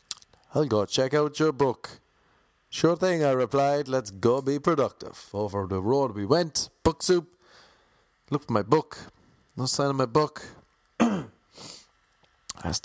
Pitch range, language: 100-135 Hz, English